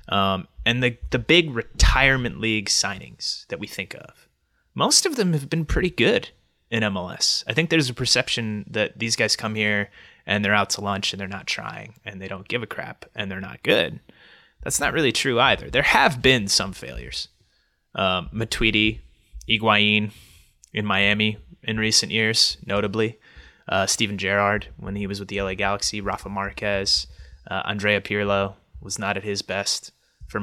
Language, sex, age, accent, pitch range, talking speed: English, male, 20-39, American, 100-120 Hz, 180 wpm